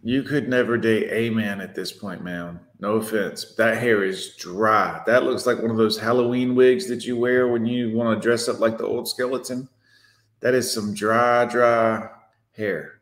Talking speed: 200 wpm